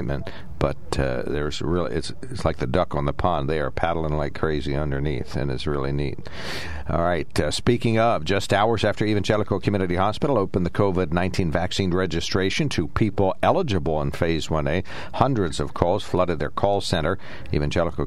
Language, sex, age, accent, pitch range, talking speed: English, male, 60-79, American, 75-90 Hz, 170 wpm